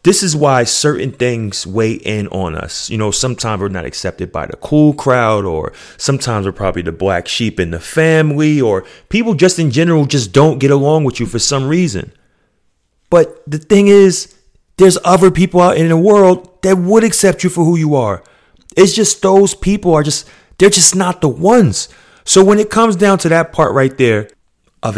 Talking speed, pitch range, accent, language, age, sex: 200 wpm, 110-160 Hz, American, English, 30-49, male